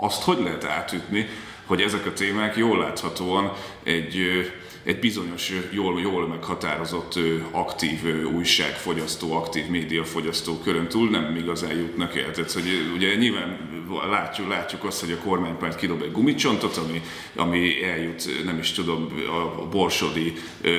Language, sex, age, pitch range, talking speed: Hungarian, male, 30-49, 80-95 Hz, 135 wpm